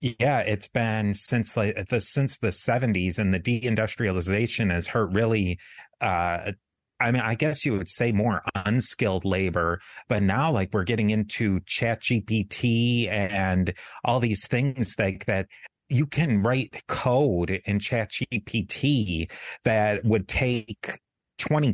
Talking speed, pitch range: 135 wpm, 95-120 Hz